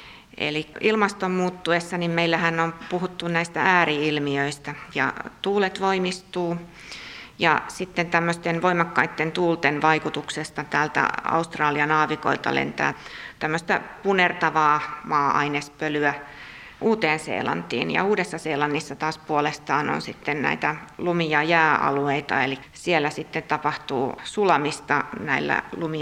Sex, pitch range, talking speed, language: female, 150-170 Hz, 100 wpm, Finnish